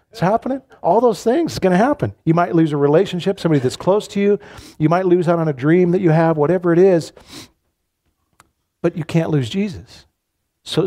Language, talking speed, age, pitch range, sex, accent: English, 210 wpm, 50-69, 125-170 Hz, male, American